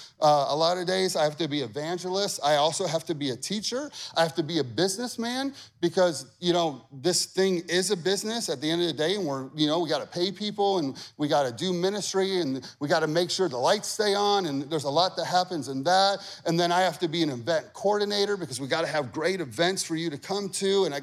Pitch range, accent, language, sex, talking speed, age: 120-195 Hz, American, English, male, 265 wpm, 30-49